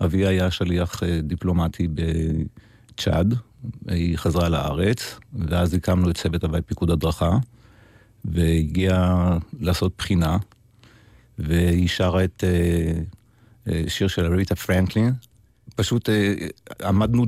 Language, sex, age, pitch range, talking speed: Hebrew, male, 50-69, 85-110 Hz, 95 wpm